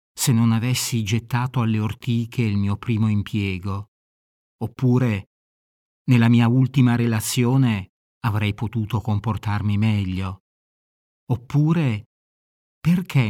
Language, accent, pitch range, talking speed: Italian, native, 100-135 Hz, 95 wpm